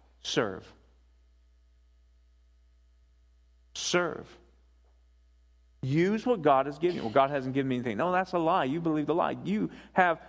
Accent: American